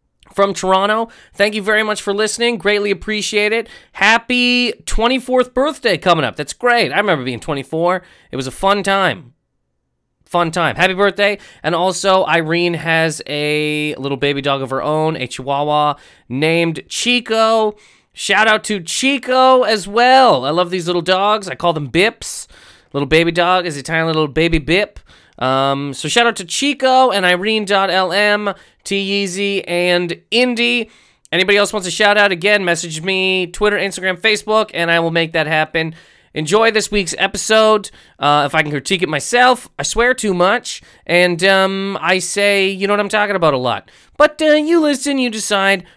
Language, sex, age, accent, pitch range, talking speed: English, male, 20-39, American, 165-215 Hz, 175 wpm